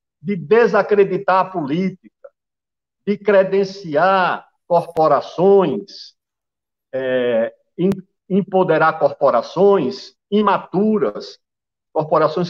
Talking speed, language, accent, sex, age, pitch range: 60 wpm, Portuguese, Brazilian, male, 50-69, 175-215 Hz